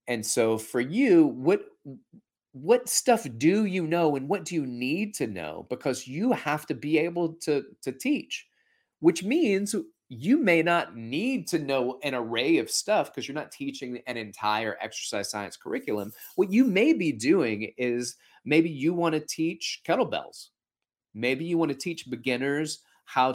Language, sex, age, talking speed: English, male, 30-49, 170 wpm